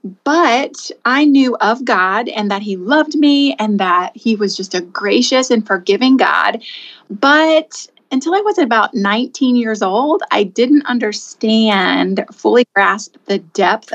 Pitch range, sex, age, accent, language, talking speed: 195-250 Hz, female, 30-49, American, English, 150 wpm